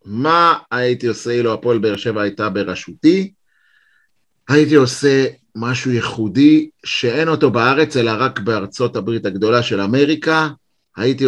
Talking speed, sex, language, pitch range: 130 wpm, male, Hebrew, 115-140 Hz